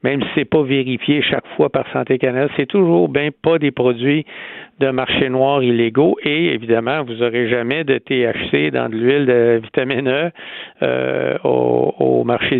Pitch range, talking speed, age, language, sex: 120-145 Hz, 175 wpm, 60-79, French, male